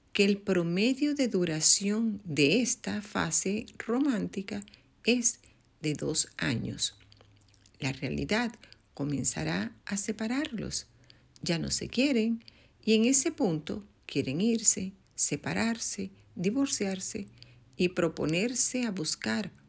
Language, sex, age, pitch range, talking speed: English, female, 50-69, 145-225 Hz, 105 wpm